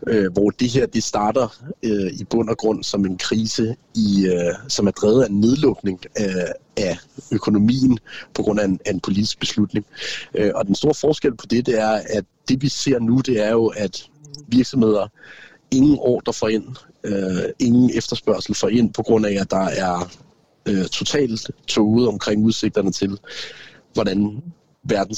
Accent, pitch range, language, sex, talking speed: native, 100-120 Hz, Danish, male, 175 wpm